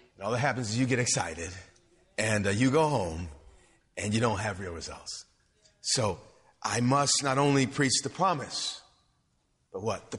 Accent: American